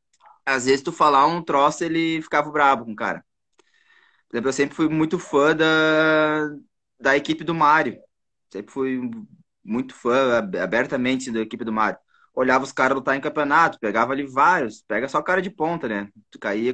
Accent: Brazilian